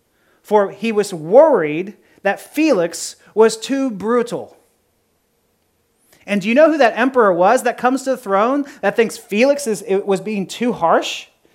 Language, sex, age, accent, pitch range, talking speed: English, male, 30-49, American, 175-230 Hz, 150 wpm